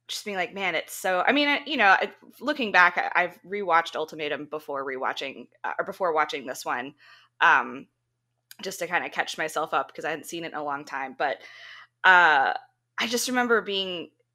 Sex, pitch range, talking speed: female, 160-235 Hz, 190 wpm